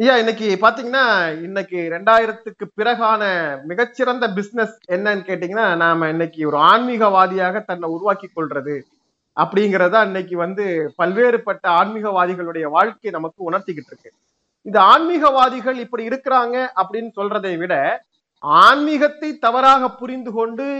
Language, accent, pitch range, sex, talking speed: Tamil, native, 185-235 Hz, male, 105 wpm